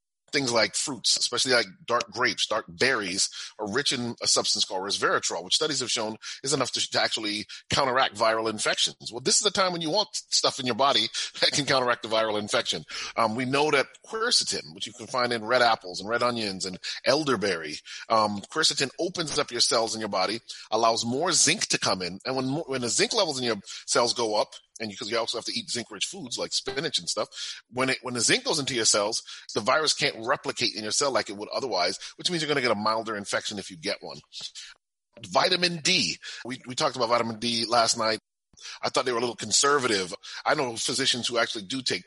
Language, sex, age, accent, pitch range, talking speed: English, male, 30-49, American, 105-135 Hz, 230 wpm